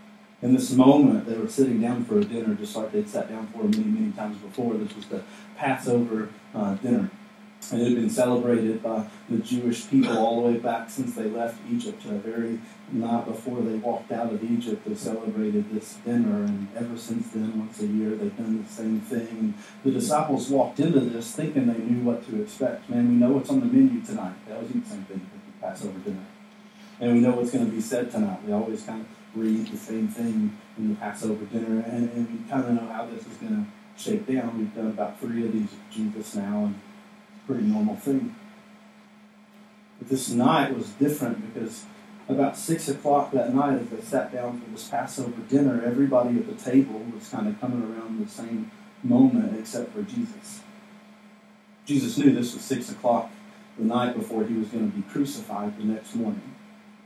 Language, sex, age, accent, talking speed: English, male, 40-59, American, 205 wpm